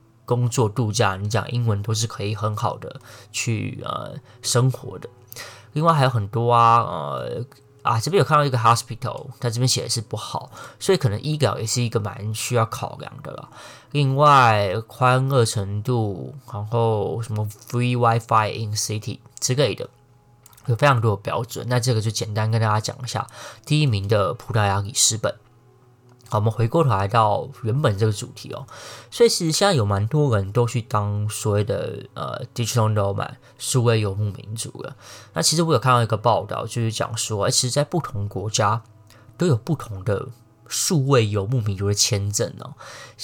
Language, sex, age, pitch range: Chinese, male, 20-39, 110-130 Hz